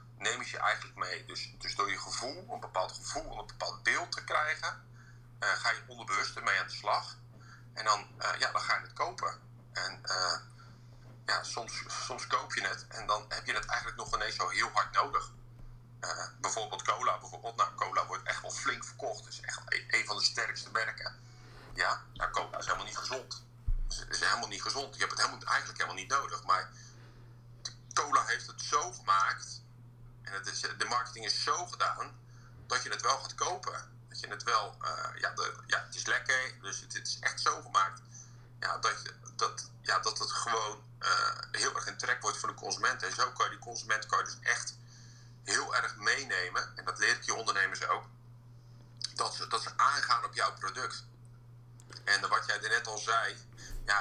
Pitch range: 120-125 Hz